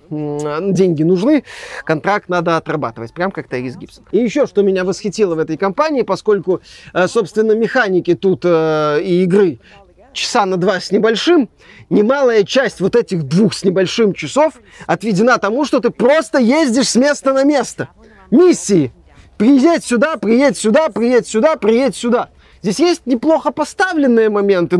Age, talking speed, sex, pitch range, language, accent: 20-39, 145 wpm, male, 175-235 Hz, Russian, native